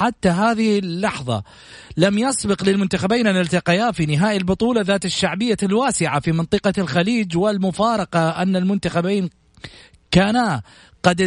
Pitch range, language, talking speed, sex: 170-205 Hz, Arabic, 115 wpm, male